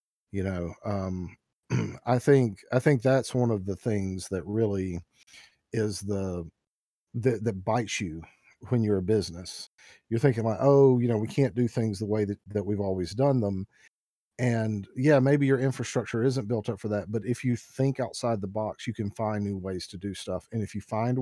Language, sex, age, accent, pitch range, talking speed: English, male, 40-59, American, 100-120 Hz, 200 wpm